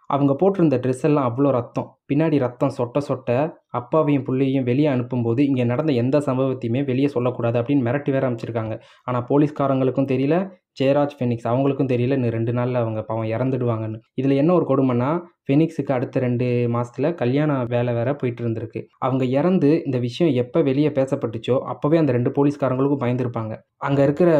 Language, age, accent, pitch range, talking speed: Tamil, 20-39, native, 125-150 Hz, 155 wpm